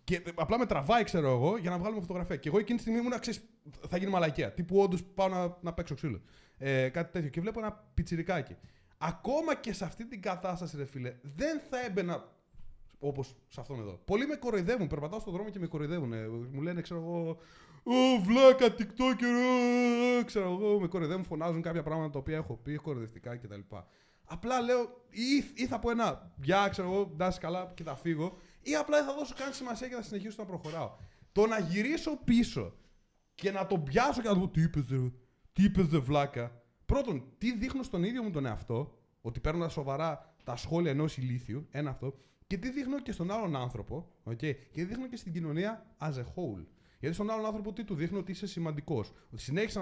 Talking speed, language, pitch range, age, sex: 205 wpm, Greek, 150-215 Hz, 20-39, male